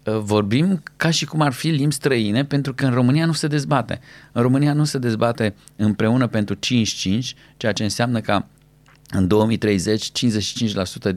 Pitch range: 110-150 Hz